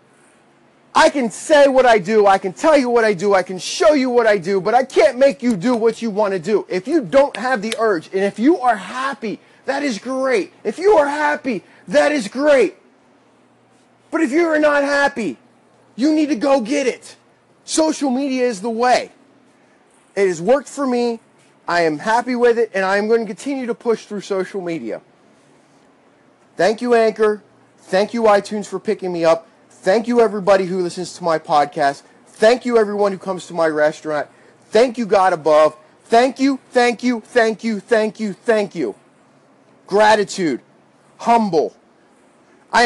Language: English